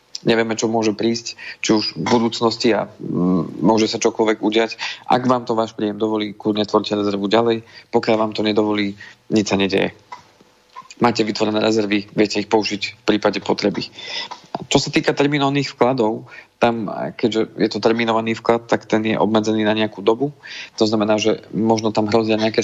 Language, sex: Slovak, male